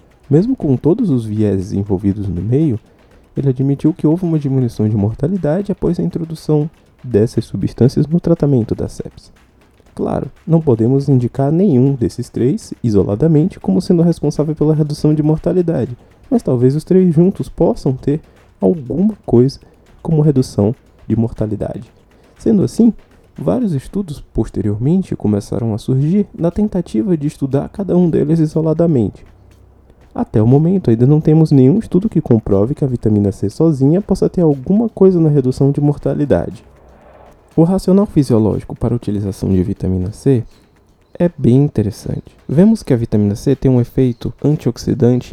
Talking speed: 150 wpm